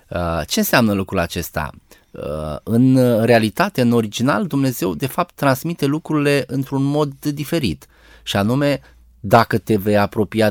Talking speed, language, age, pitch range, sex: 125 wpm, Romanian, 20-39, 95-135 Hz, male